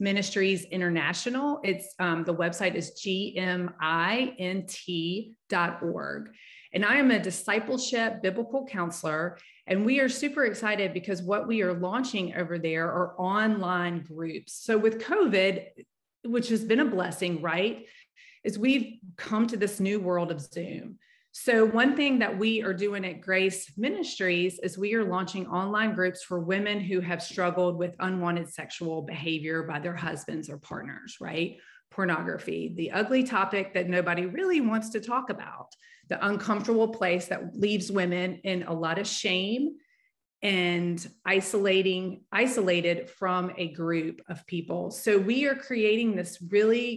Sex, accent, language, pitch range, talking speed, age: female, American, English, 180-225 Hz, 145 wpm, 30-49